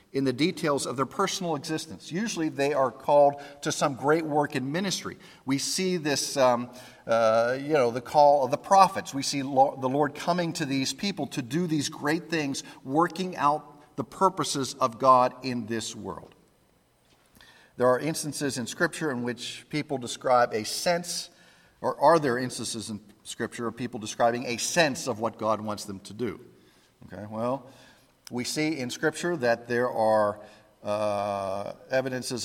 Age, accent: 50-69, American